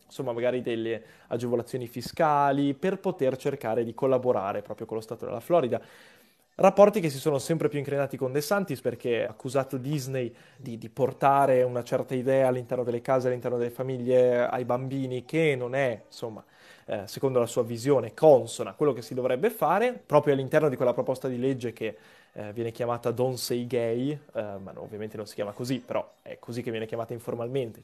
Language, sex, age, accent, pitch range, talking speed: Italian, male, 20-39, native, 120-145 Hz, 185 wpm